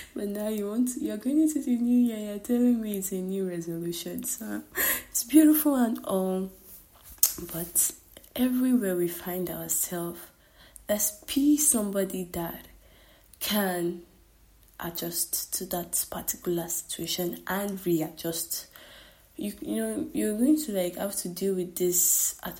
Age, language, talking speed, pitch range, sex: 20-39, English, 140 wpm, 175-225 Hz, female